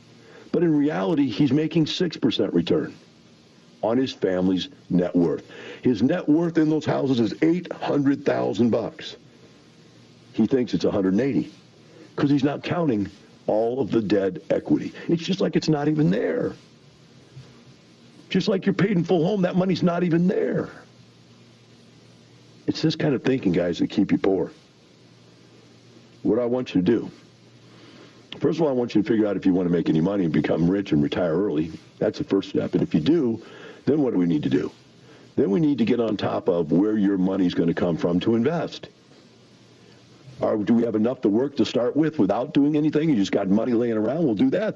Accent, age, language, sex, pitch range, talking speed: American, 50-69, English, male, 95-160 Hz, 195 wpm